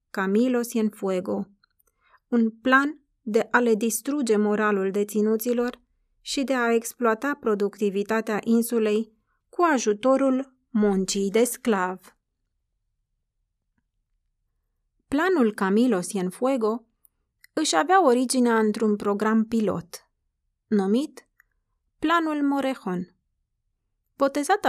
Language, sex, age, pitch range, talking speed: Romanian, female, 30-49, 205-270 Hz, 85 wpm